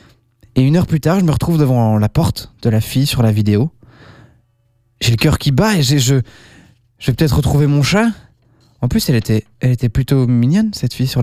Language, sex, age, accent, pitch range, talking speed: French, male, 20-39, French, 115-155 Hz, 225 wpm